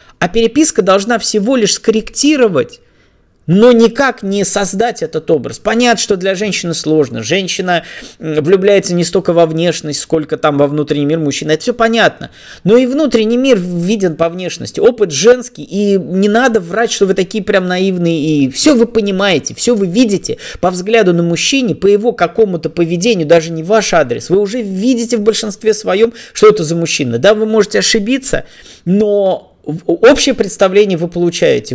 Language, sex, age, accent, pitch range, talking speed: Russian, male, 20-39, native, 165-225 Hz, 165 wpm